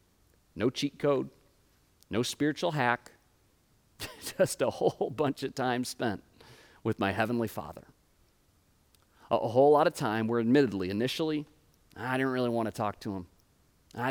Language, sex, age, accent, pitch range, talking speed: English, male, 40-59, American, 105-140 Hz, 150 wpm